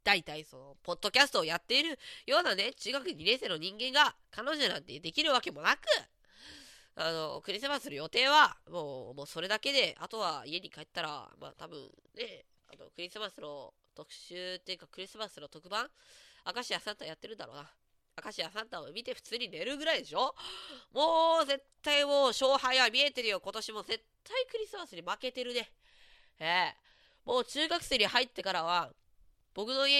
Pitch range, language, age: 185-290 Hz, Japanese, 20-39